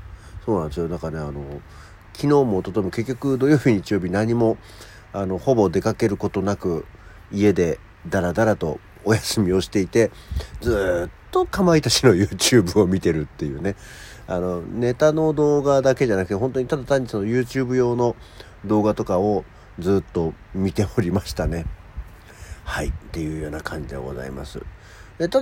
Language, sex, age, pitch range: Japanese, male, 50-69, 90-120 Hz